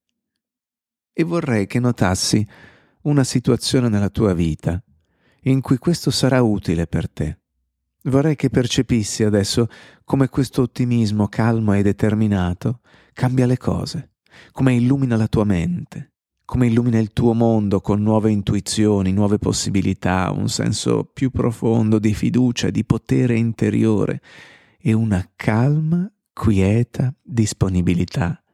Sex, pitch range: male, 100-125 Hz